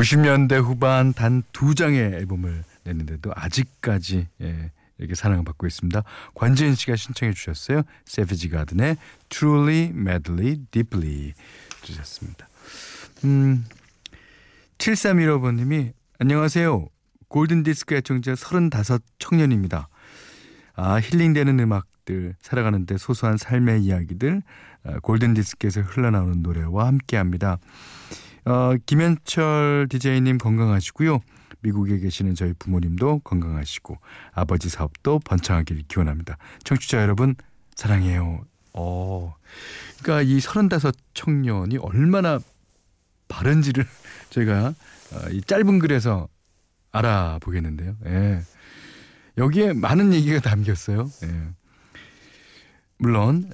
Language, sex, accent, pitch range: Korean, male, native, 90-135 Hz